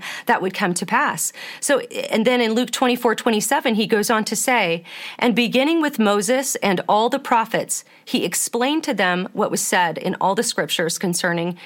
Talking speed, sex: 190 wpm, female